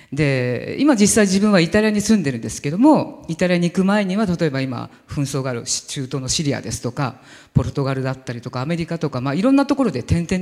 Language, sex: Japanese, female